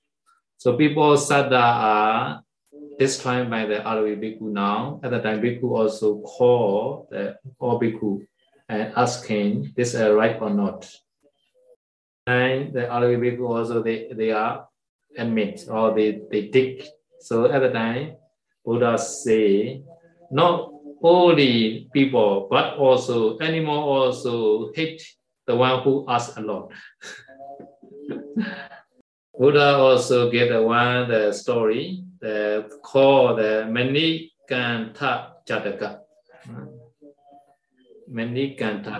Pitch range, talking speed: 110-145 Hz, 115 wpm